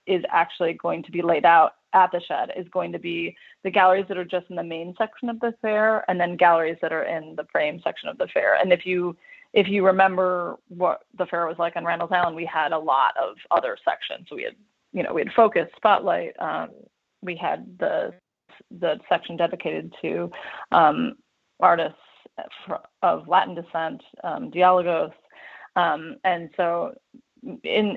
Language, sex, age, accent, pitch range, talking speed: English, female, 30-49, American, 170-200 Hz, 185 wpm